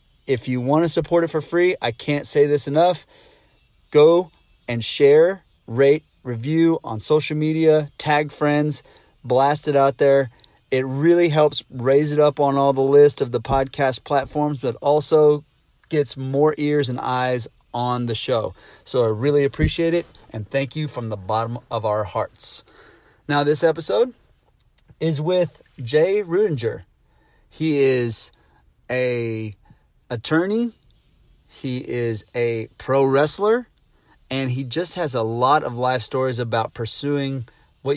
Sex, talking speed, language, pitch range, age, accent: male, 145 wpm, English, 120-150 Hz, 30-49, American